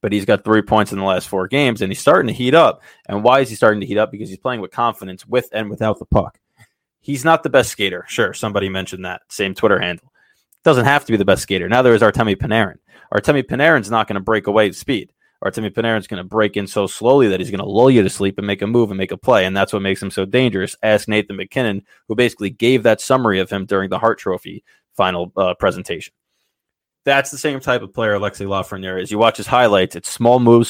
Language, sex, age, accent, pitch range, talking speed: English, male, 20-39, American, 100-120 Hz, 255 wpm